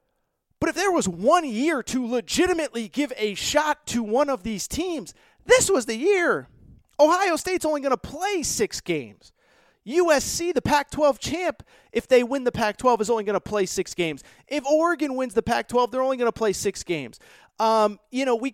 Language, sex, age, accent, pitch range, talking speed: English, male, 30-49, American, 215-295 Hz, 195 wpm